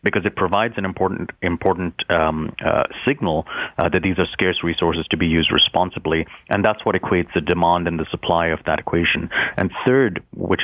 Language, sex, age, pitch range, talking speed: English, male, 30-49, 85-100 Hz, 190 wpm